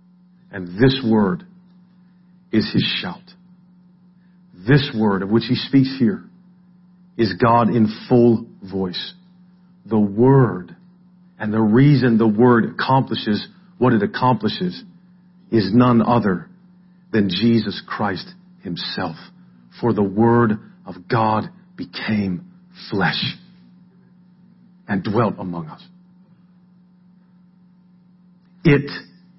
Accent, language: American, English